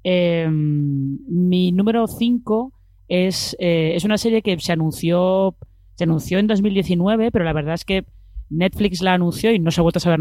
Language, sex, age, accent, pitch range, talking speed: Spanish, female, 20-39, Spanish, 150-190 Hz, 180 wpm